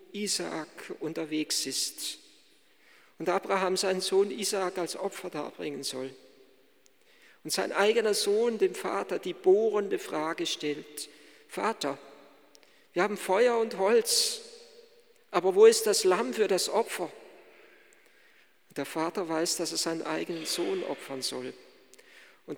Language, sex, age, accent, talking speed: German, male, 50-69, German, 125 wpm